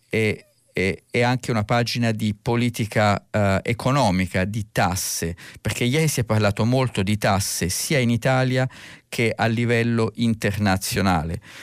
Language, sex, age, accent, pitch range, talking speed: Italian, male, 50-69, native, 95-115 Hz, 130 wpm